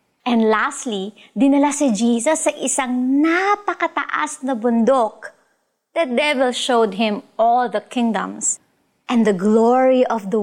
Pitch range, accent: 215-275 Hz, native